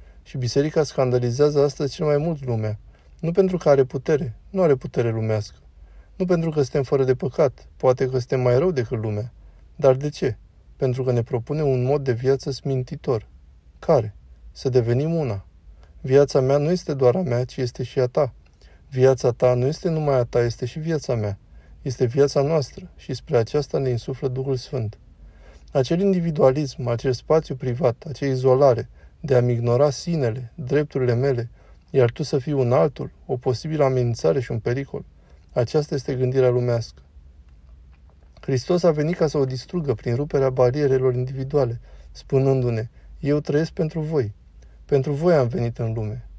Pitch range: 115-145 Hz